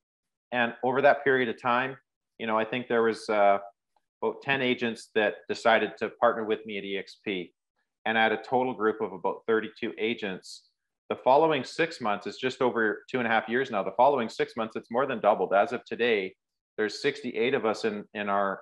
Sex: male